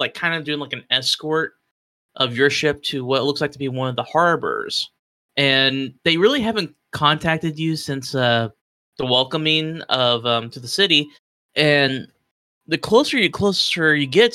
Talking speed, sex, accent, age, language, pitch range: 180 wpm, male, American, 20-39, English, 130-150 Hz